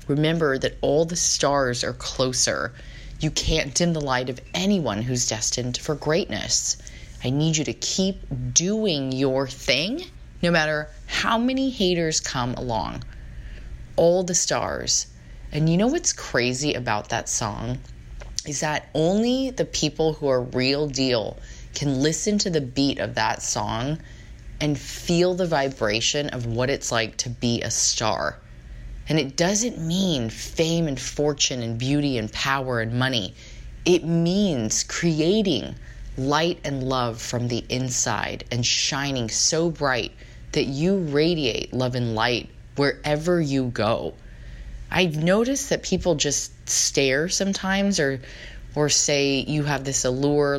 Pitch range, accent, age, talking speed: 125-165 Hz, American, 20-39, 145 wpm